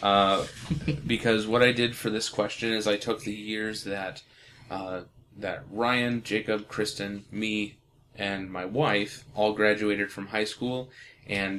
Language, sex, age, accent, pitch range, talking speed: English, male, 20-39, American, 105-125 Hz, 150 wpm